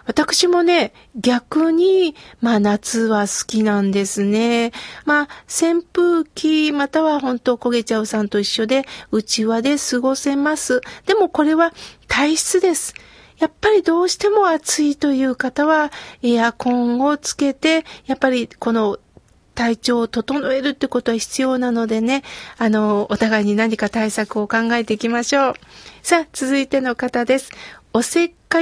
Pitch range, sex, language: 240-315 Hz, female, Japanese